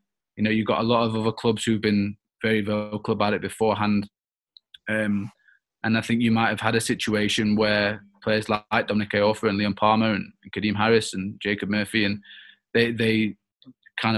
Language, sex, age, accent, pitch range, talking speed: English, male, 20-39, British, 105-115 Hz, 190 wpm